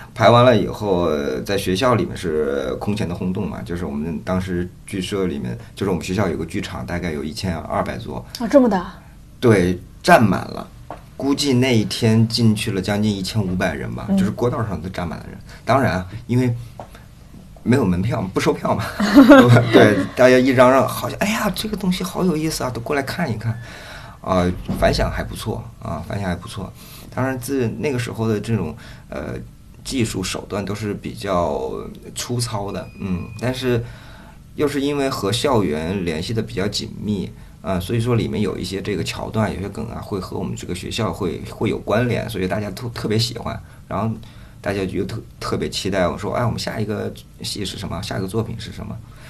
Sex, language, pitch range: male, Chinese, 95-125 Hz